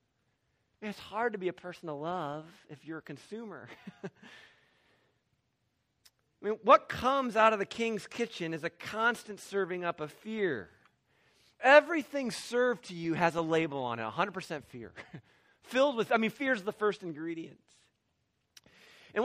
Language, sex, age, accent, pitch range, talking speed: English, male, 40-59, American, 180-250 Hz, 155 wpm